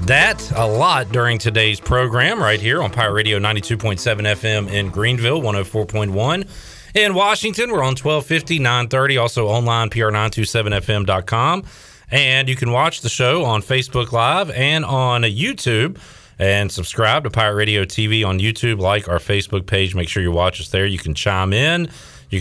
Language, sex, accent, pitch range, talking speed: English, male, American, 100-130 Hz, 160 wpm